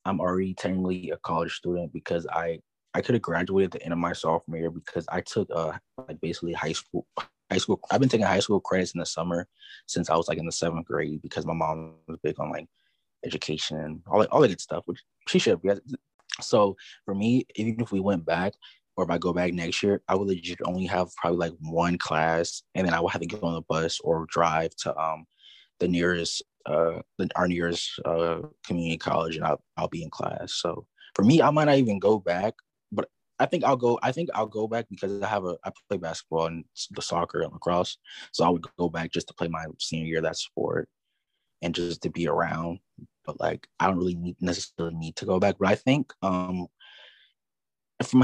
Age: 20-39